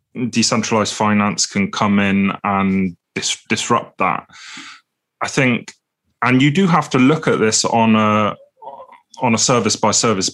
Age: 20-39